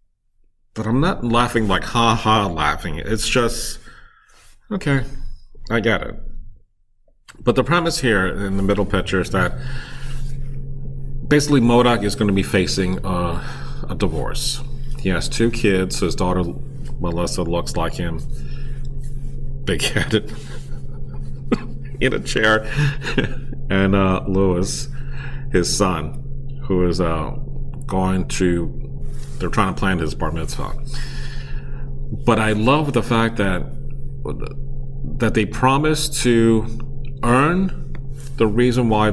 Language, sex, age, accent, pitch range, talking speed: English, male, 40-59, American, 95-135 Hz, 120 wpm